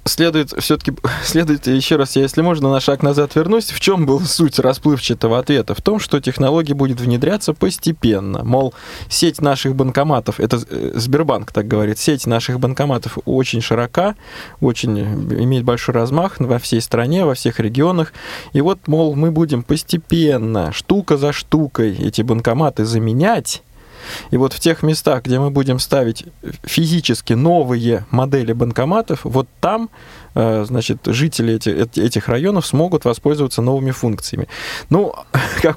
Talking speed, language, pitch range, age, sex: 145 wpm, Russian, 120-155 Hz, 20-39, male